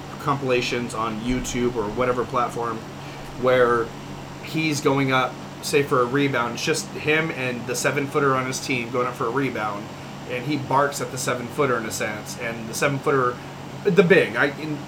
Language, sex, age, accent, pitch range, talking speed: English, male, 30-49, American, 125-155 Hz, 190 wpm